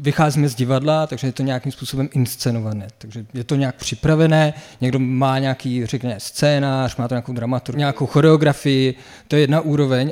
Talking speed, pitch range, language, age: 170 wpm, 130-145 Hz, Czech, 40-59